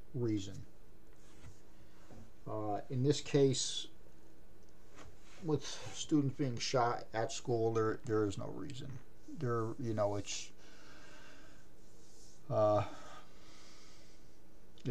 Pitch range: 105-130 Hz